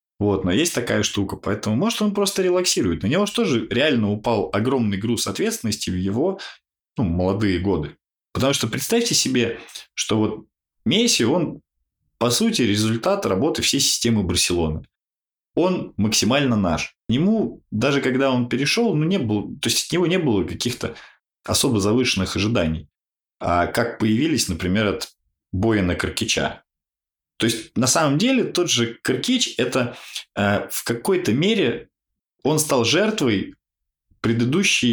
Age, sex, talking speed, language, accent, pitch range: 20-39, male, 150 wpm, Russian, native, 95-135 Hz